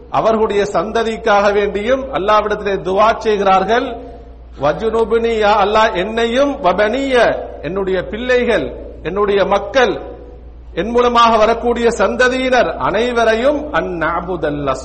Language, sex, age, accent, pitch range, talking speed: Tamil, male, 50-69, native, 185-235 Hz, 75 wpm